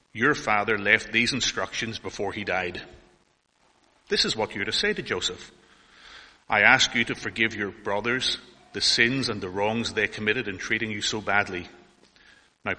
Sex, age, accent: male, 30-49, Irish